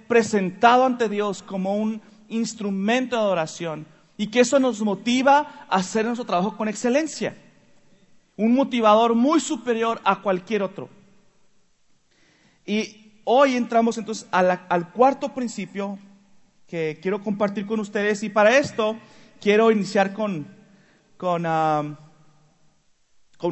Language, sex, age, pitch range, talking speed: Spanish, male, 40-59, 180-220 Hz, 120 wpm